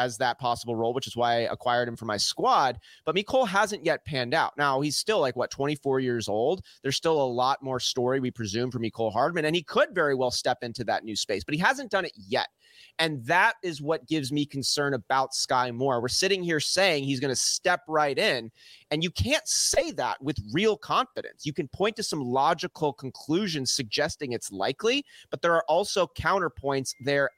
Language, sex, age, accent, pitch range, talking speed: English, male, 30-49, American, 125-160 Hz, 215 wpm